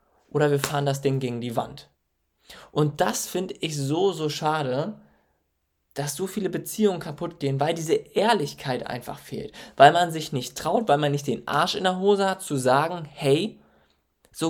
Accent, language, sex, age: German, German, male, 20-39